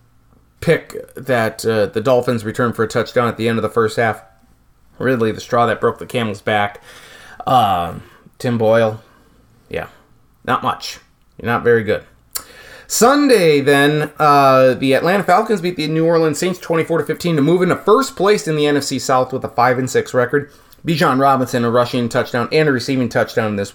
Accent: American